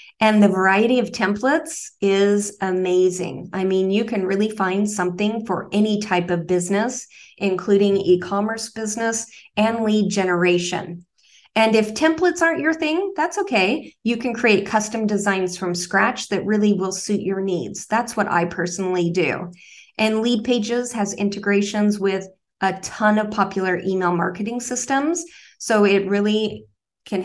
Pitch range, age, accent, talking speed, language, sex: 190-220 Hz, 30-49, American, 150 wpm, English, female